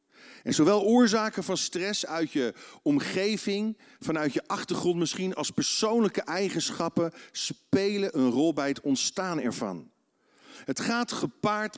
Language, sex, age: Dutch, male, 50-69